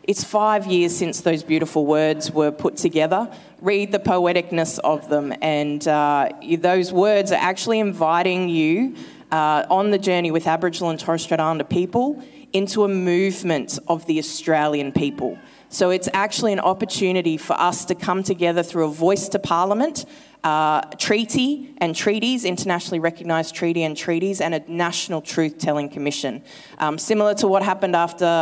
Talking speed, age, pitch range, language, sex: 160 wpm, 20-39, 150-190 Hz, English, female